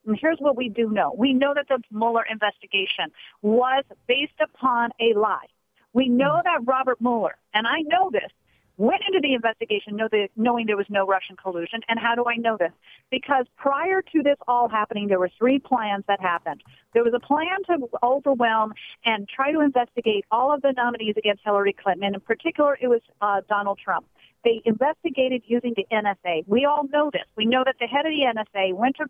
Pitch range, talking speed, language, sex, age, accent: 215-270 Hz, 200 wpm, English, female, 50-69, American